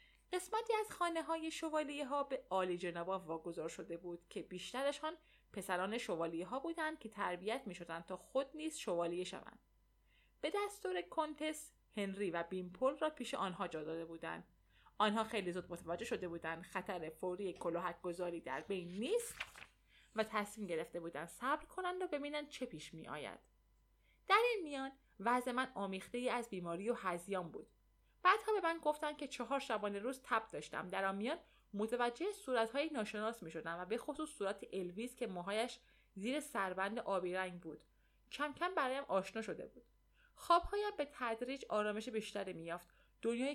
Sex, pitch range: female, 180-280 Hz